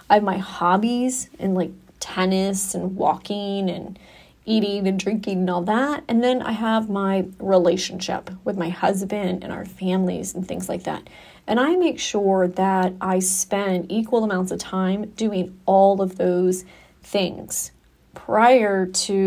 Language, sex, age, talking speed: English, female, 30-49, 155 wpm